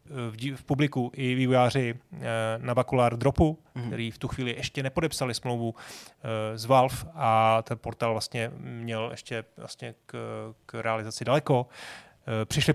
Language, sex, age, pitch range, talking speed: Czech, male, 30-49, 115-140 Hz, 130 wpm